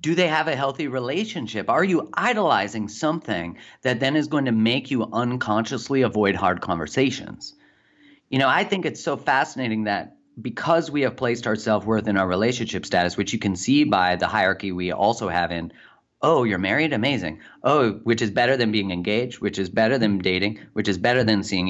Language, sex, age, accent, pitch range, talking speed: English, male, 30-49, American, 95-125 Hz, 195 wpm